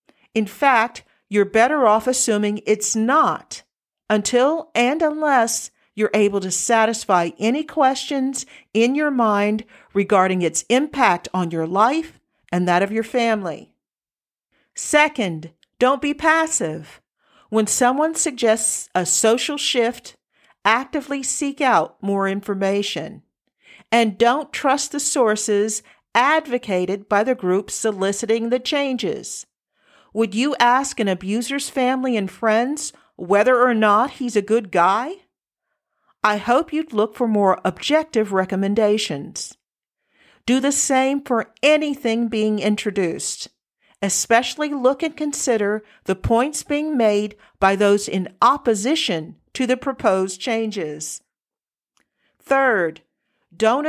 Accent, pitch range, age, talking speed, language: American, 205-265 Hz, 50-69, 120 wpm, English